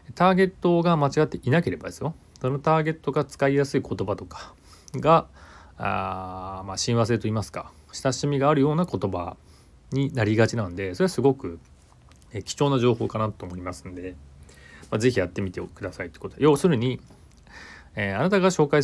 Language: Japanese